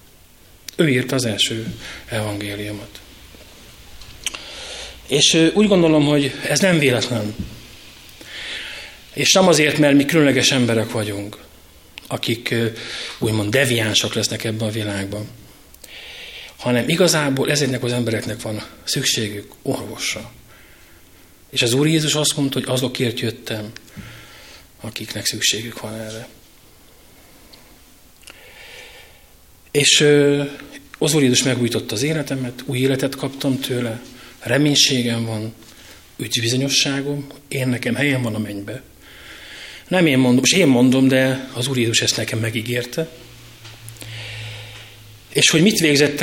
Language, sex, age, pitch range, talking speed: Hungarian, male, 30-49, 110-140 Hz, 110 wpm